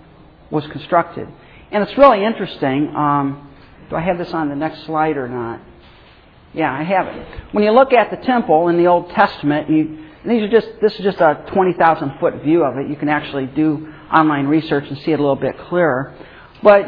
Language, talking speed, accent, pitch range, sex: English, 215 wpm, American, 145-180 Hz, male